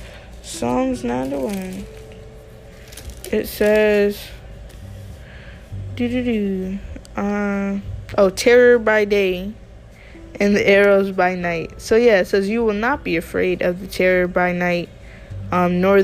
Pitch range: 180-245 Hz